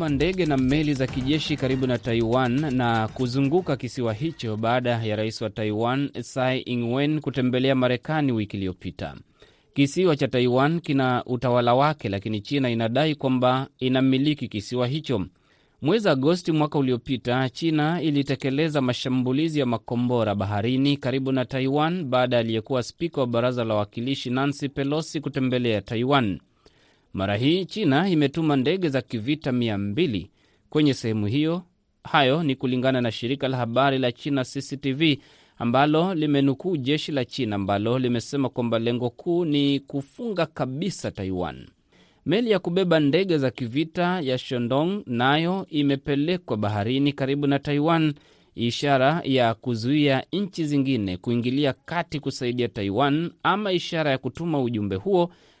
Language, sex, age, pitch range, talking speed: Swahili, male, 30-49, 120-150 Hz, 135 wpm